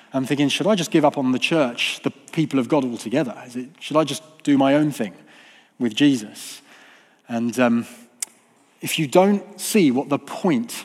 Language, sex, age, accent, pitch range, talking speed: English, male, 30-49, British, 140-190 Hz, 185 wpm